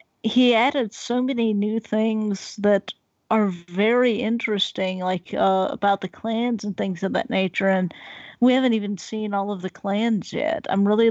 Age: 40-59